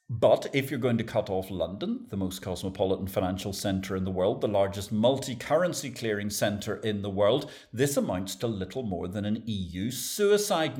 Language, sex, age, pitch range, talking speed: English, male, 50-69, 95-160 Hz, 185 wpm